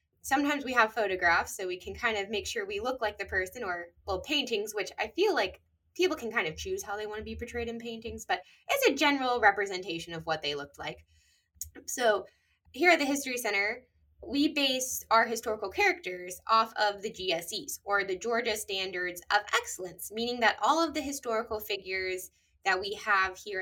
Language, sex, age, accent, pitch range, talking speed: English, female, 10-29, American, 190-275 Hz, 200 wpm